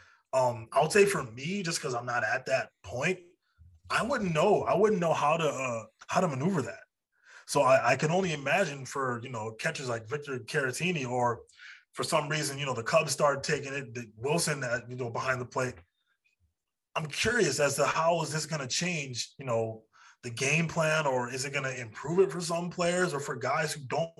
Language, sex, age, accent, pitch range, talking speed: English, male, 20-39, American, 125-155 Hz, 220 wpm